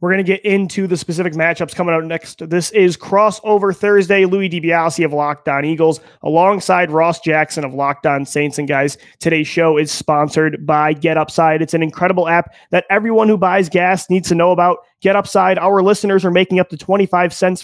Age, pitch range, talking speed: 30-49, 155-190 Hz, 205 wpm